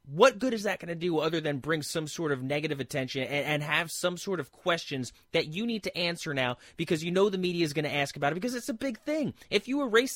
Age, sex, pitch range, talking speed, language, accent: 30-49, male, 160-235 Hz, 280 wpm, English, American